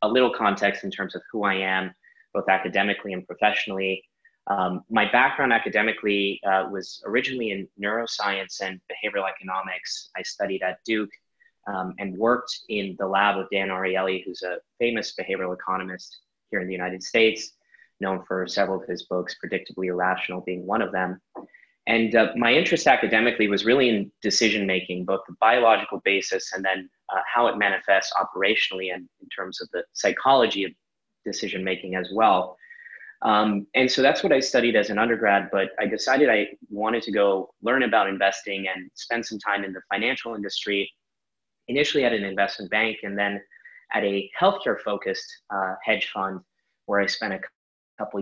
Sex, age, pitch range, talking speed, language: male, 20-39, 95-110 Hz, 170 wpm, English